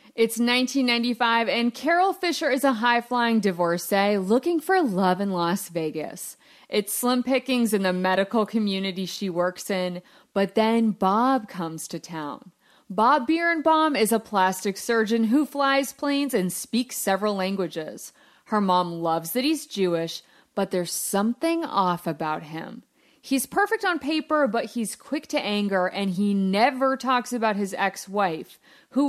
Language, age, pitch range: English, 30-49, 195-275 Hz